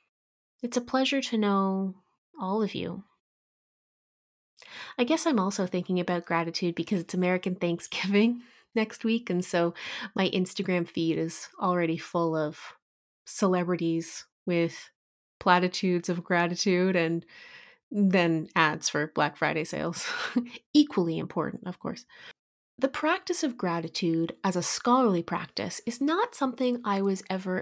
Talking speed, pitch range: 130 wpm, 180-240 Hz